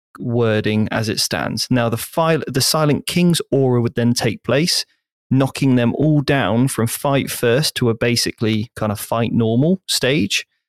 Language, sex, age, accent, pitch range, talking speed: English, male, 30-49, British, 115-130 Hz, 170 wpm